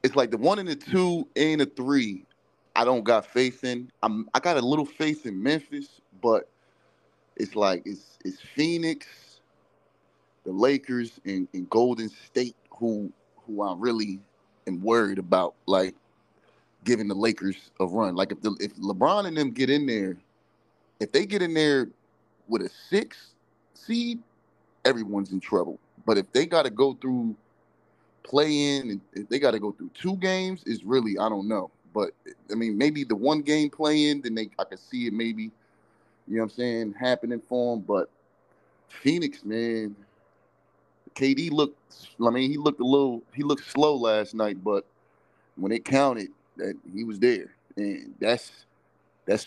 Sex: male